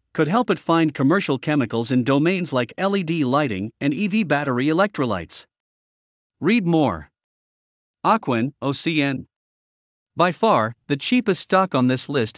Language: English